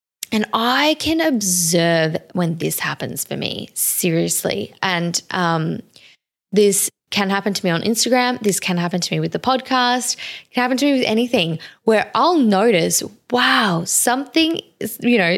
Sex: female